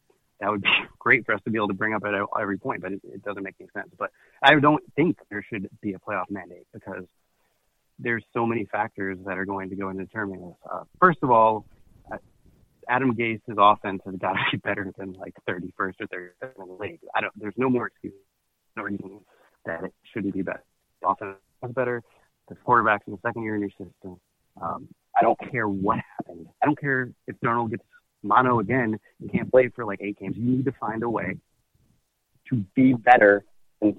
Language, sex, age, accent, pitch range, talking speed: English, male, 30-49, American, 100-120 Hz, 220 wpm